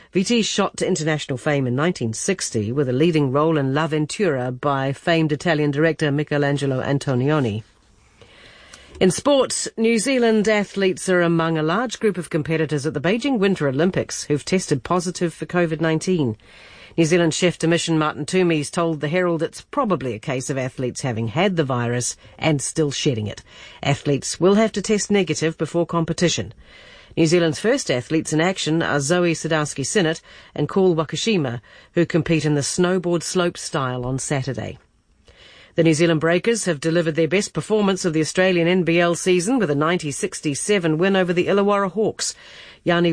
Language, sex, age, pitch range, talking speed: English, female, 50-69, 145-185 Hz, 165 wpm